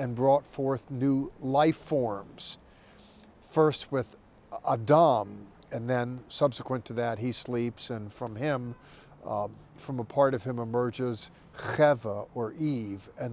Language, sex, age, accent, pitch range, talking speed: English, male, 50-69, American, 120-155 Hz, 135 wpm